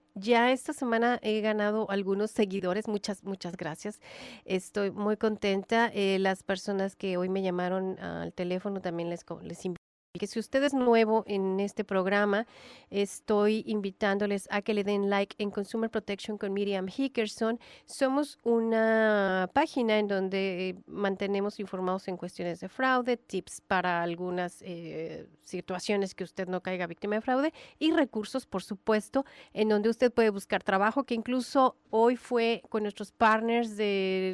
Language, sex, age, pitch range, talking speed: English, female, 40-59, 185-225 Hz, 155 wpm